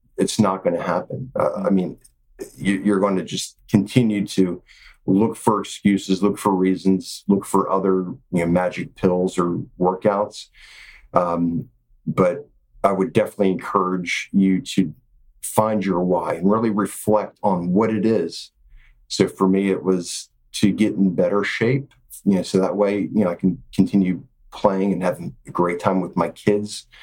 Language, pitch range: English, 90-110 Hz